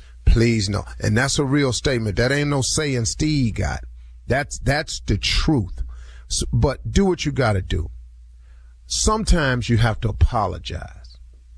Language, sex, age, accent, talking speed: English, male, 40-59, American, 150 wpm